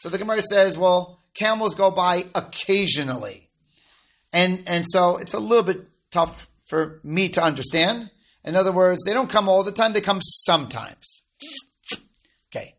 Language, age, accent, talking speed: English, 40-59, American, 160 wpm